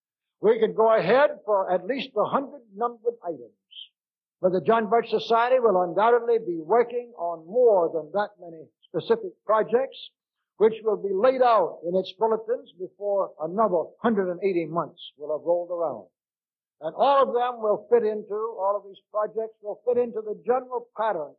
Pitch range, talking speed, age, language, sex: 175-230 Hz, 170 wpm, 60-79, English, male